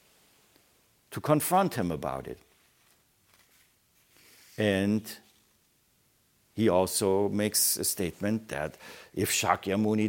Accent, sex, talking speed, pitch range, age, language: German, male, 85 wpm, 90-110 Hz, 60-79, English